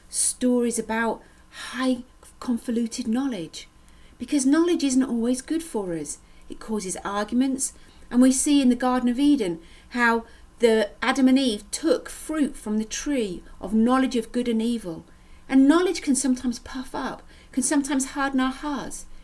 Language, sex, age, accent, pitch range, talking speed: English, female, 40-59, British, 210-265 Hz, 155 wpm